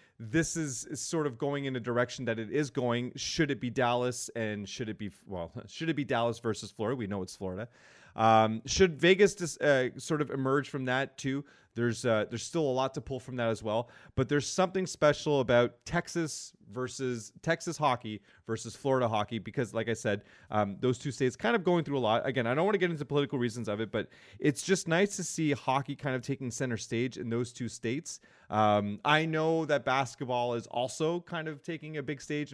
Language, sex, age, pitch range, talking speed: English, male, 30-49, 110-145 Hz, 220 wpm